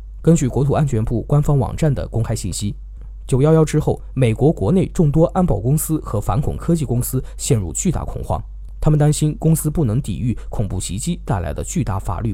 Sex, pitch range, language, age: male, 110-155 Hz, Chinese, 20-39